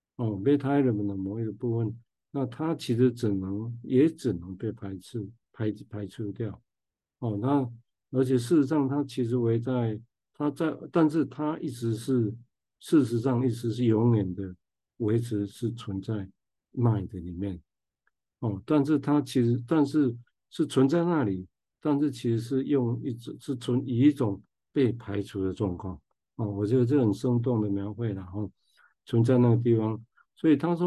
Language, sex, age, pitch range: Chinese, male, 50-69, 105-130 Hz